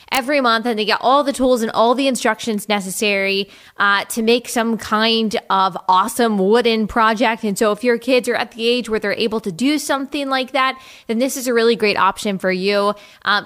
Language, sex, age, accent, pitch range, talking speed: English, female, 20-39, American, 215-255 Hz, 220 wpm